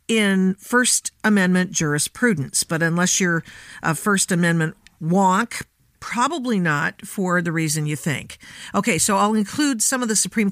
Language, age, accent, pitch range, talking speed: English, 50-69, American, 160-235 Hz, 150 wpm